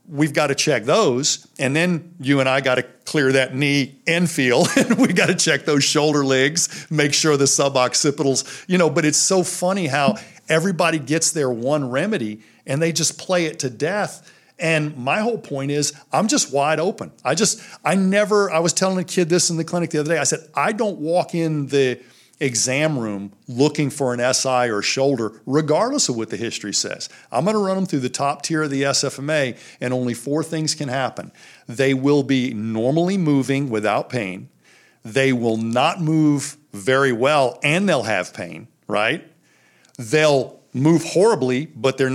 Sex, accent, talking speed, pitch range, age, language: male, American, 190 wpm, 130-160 Hz, 50-69, English